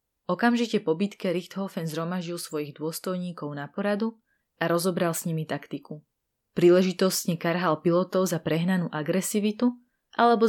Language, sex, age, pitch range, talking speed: Slovak, female, 20-39, 155-205 Hz, 120 wpm